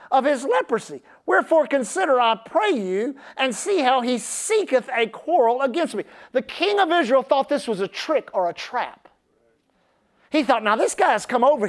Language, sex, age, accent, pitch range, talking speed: English, male, 40-59, American, 235-310 Hz, 190 wpm